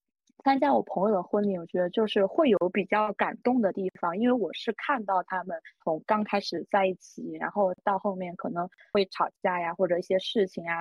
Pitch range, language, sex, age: 180-225 Hz, Chinese, female, 20-39